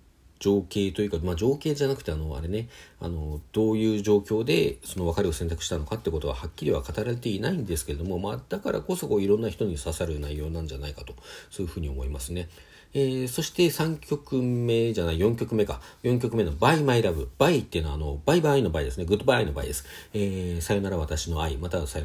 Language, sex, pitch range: Japanese, male, 80-115 Hz